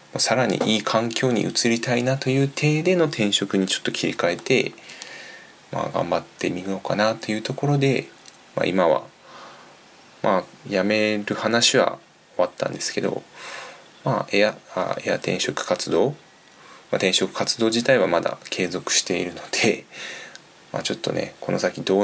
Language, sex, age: Japanese, male, 20-39